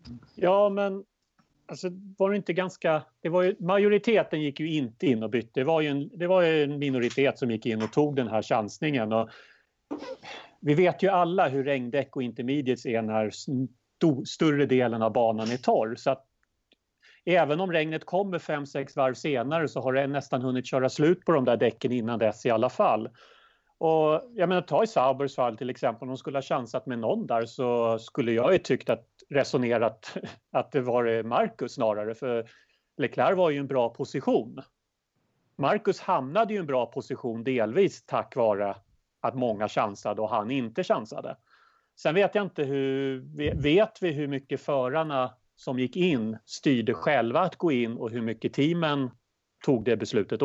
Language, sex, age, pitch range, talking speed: Swedish, male, 40-59, 120-160 Hz, 185 wpm